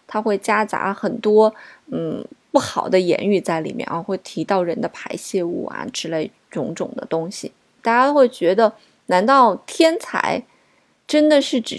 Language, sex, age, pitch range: Chinese, female, 20-39, 195-260 Hz